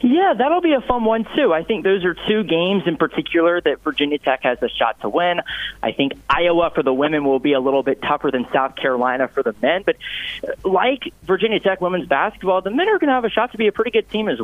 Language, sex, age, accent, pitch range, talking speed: English, male, 30-49, American, 135-205 Hz, 260 wpm